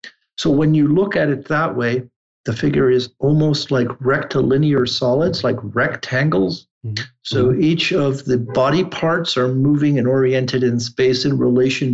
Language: English